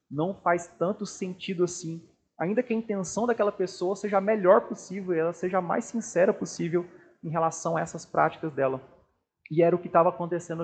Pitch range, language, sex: 145-185 Hz, Portuguese, male